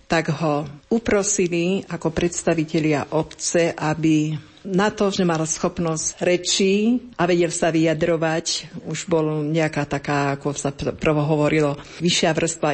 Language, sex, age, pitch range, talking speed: Slovak, female, 50-69, 155-175 Hz, 125 wpm